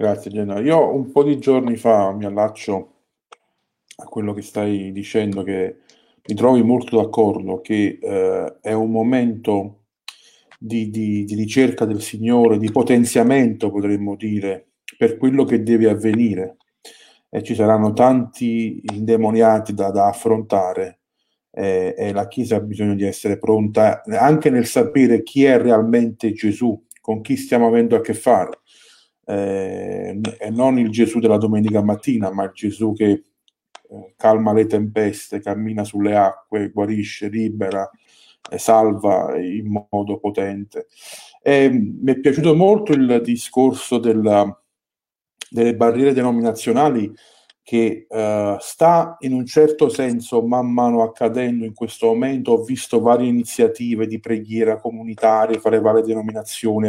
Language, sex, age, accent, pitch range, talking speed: Italian, male, 40-59, native, 105-120 Hz, 135 wpm